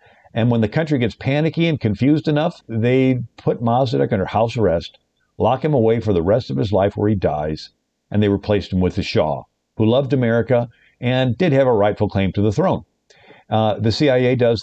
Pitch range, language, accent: 105-135 Hz, English, American